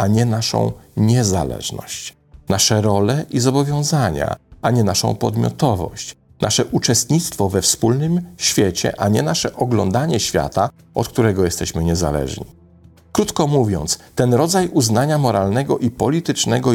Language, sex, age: Polish, male, 40-59